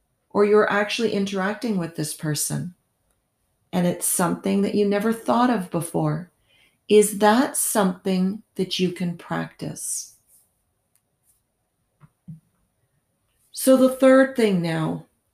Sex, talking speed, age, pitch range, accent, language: female, 110 wpm, 40-59, 175-215 Hz, American, English